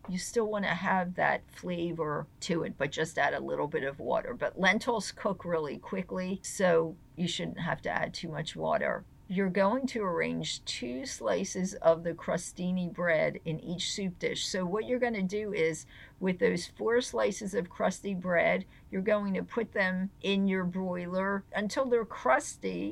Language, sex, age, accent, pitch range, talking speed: English, female, 50-69, American, 160-200 Hz, 185 wpm